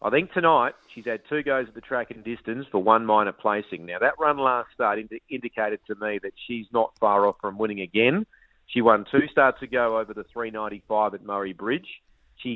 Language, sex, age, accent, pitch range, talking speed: English, male, 40-59, Australian, 115-140 Hz, 210 wpm